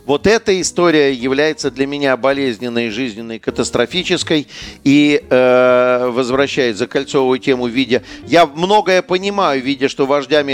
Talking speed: 125 wpm